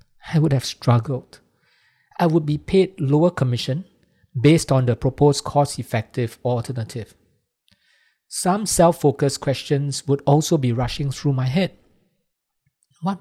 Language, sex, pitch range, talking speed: English, male, 125-155 Hz, 125 wpm